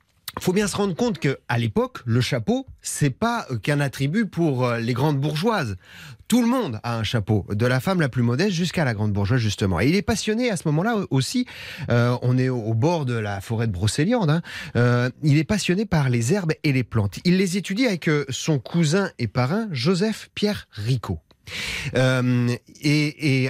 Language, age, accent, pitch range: French, 30-49, French, 120-180 Hz